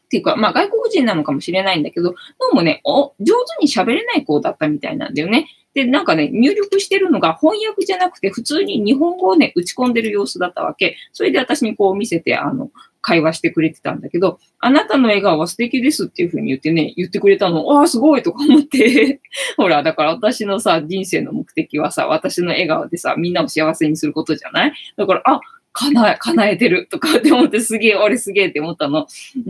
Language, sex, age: Japanese, female, 20-39